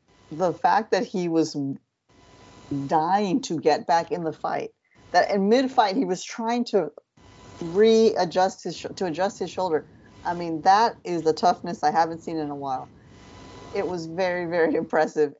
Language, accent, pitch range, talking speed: English, American, 150-185 Hz, 170 wpm